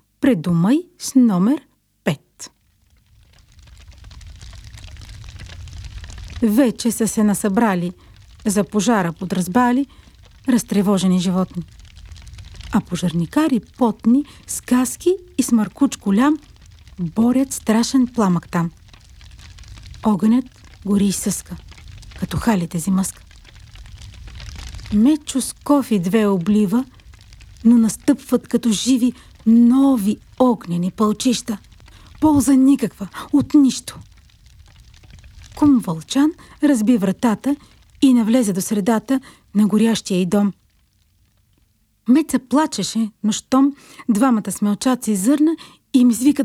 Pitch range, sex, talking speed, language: 160-255 Hz, female, 95 wpm, Bulgarian